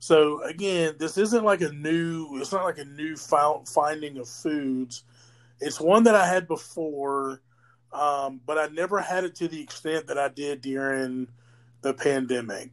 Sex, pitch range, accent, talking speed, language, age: male, 130-160 Hz, American, 170 wpm, English, 30-49